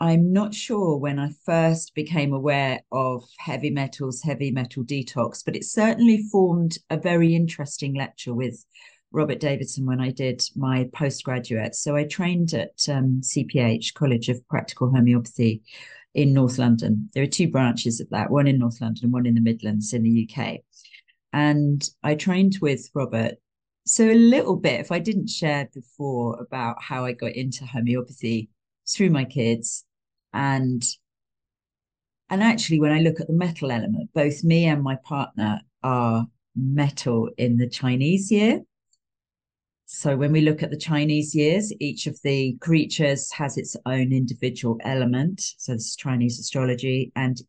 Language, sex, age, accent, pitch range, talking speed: English, female, 40-59, British, 120-150 Hz, 160 wpm